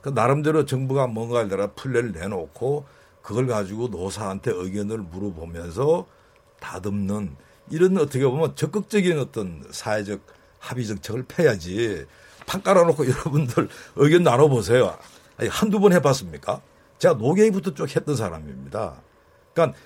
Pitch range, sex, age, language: 115-170 Hz, male, 50-69, Korean